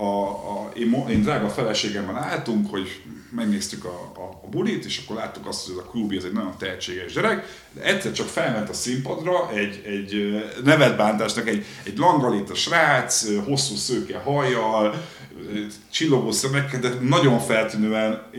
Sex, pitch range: male, 105-140 Hz